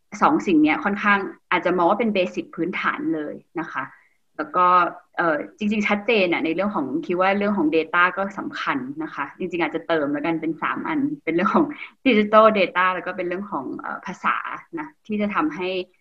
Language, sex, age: Thai, female, 20-39